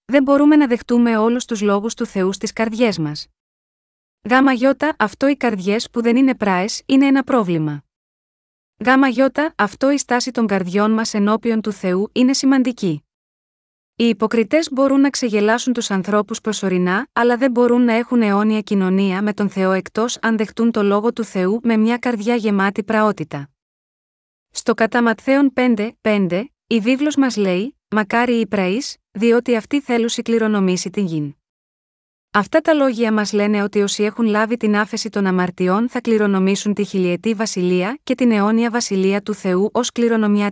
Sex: female